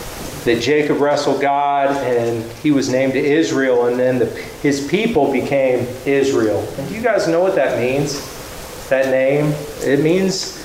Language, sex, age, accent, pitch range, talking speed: English, male, 40-59, American, 130-205 Hz, 165 wpm